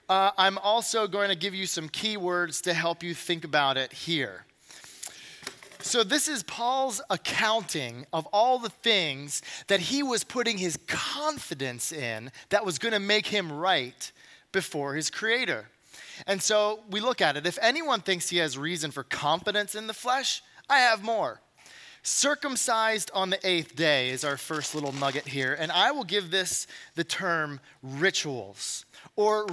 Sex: male